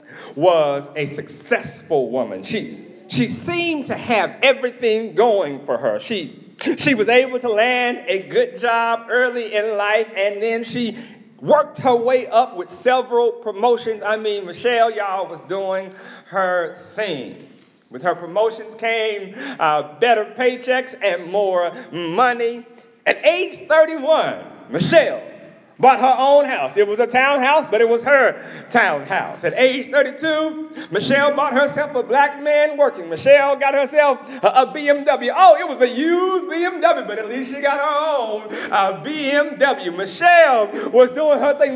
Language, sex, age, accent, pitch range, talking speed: English, male, 40-59, American, 230-300 Hz, 150 wpm